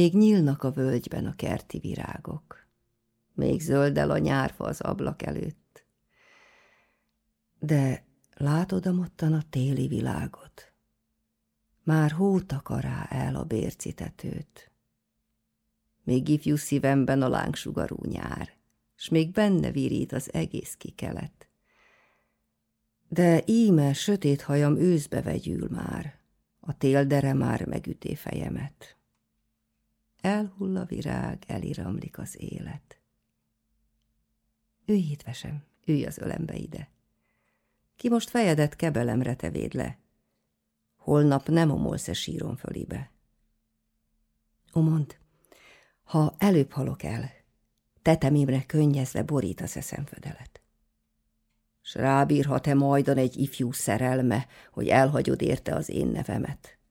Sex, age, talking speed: female, 50-69, 100 wpm